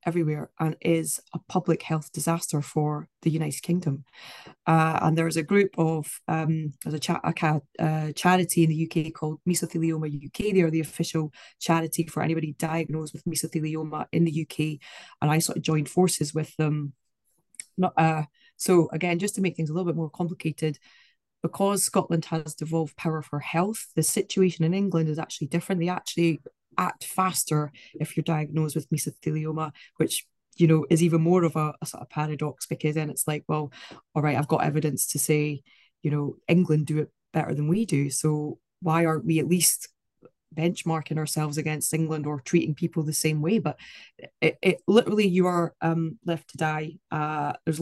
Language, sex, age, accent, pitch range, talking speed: English, female, 20-39, British, 155-170 Hz, 185 wpm